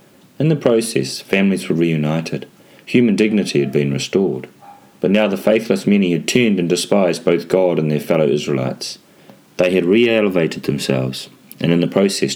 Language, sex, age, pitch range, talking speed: English, male, 30-49, 70-90 Hz, 165 wpm